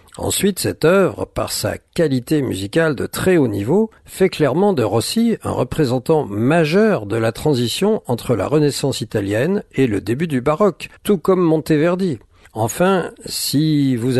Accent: French